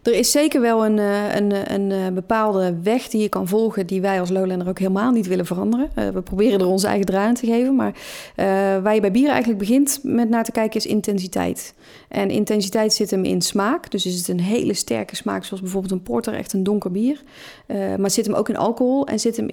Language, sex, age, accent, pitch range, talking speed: Dutch, female, 30-49, Dutch, 190-225 Hz, 225 wpm